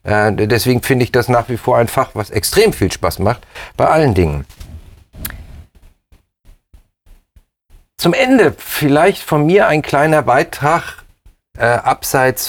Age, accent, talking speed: 40-59, German, 130 wpm